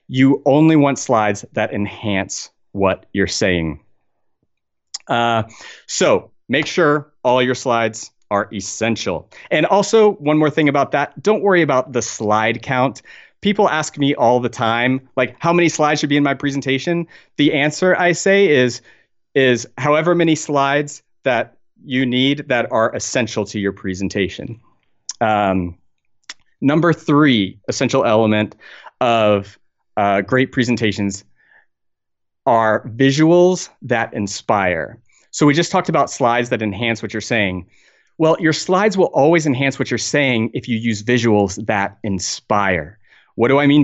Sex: male